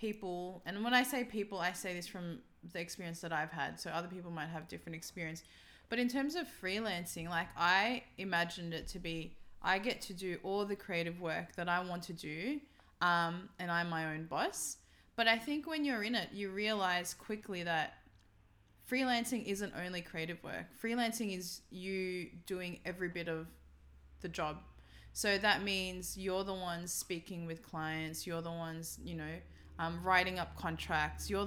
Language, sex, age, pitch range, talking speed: English, female, 20-39, 165-195 Hz, 185 wpm